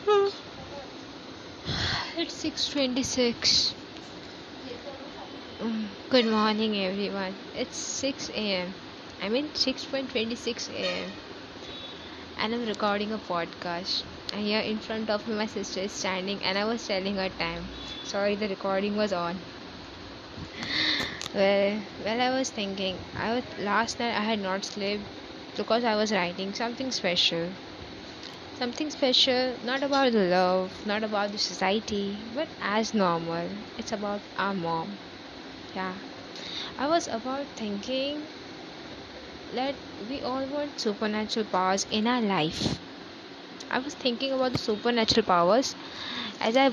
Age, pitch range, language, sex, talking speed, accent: 20-39, 200-260 Hz, English, female, 130 wpm, Indian